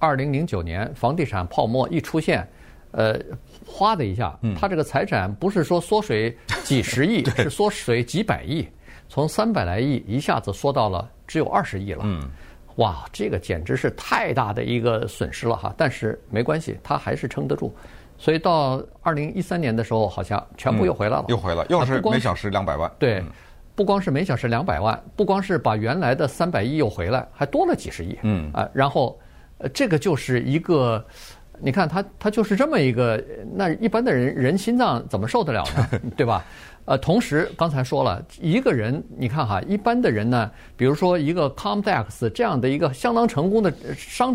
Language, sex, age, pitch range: Chinese, male, 50-69, 115-185 Hz